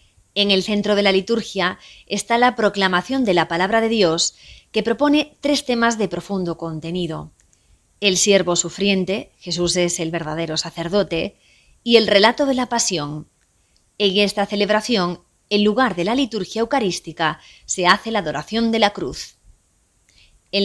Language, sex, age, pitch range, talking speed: Spanish, female, 20-39, 170-215 Hz, 150 wpm